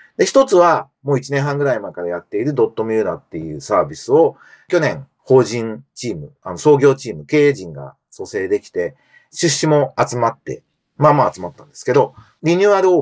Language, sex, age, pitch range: Japanese, male, 40-59, 115-180 Hz